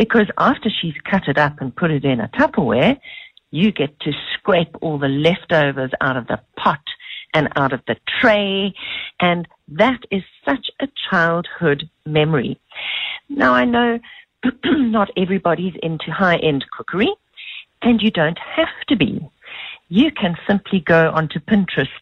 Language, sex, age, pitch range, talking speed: English, female, 50-69, 155-225 Hz, 150 wpm